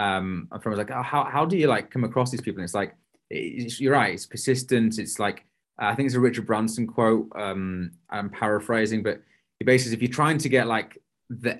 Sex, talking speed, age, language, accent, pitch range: male, 230 wpm, 20-39, English, British, 105-125 Hz